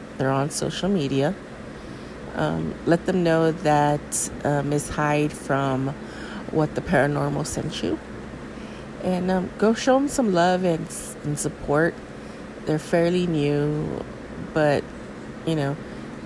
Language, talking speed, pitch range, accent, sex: English, 125 wpm, 135-175 Hz, American, female